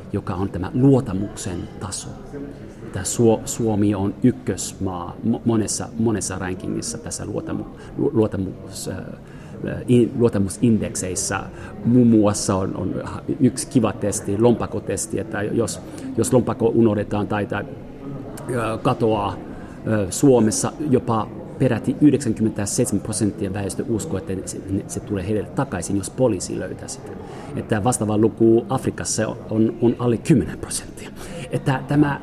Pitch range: 105-140 Hz